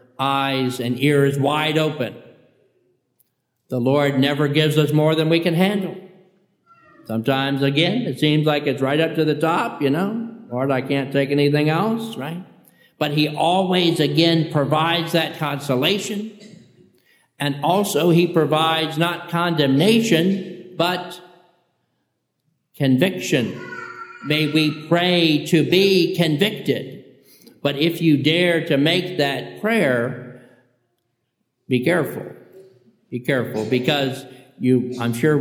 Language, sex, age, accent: English, male, 50-69, American